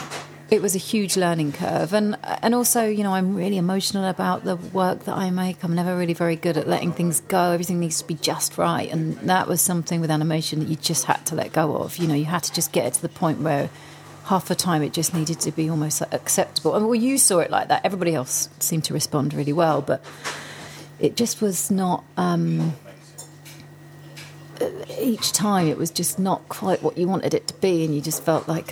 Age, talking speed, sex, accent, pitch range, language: 40-59, 230 wpm, female, British, 155-190 Hz, English